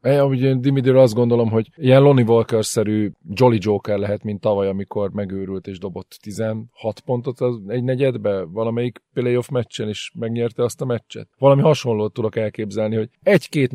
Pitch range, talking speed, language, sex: 100-125 Hz, 160 wpm, Hungarian, male